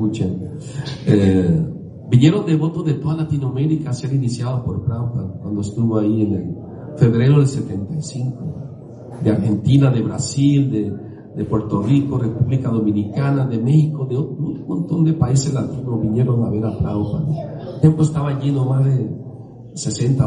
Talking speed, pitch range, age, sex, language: 155 wpm, 110-145 Hz, 50-69, male, Spanish